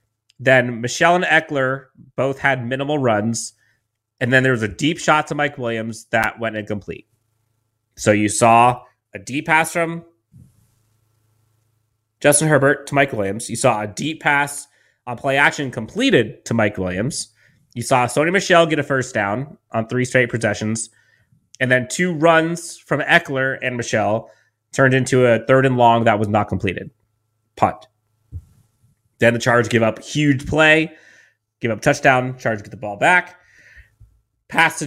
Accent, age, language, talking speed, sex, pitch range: American, 30-49, English, 160 wpm, male, 110-145 Hz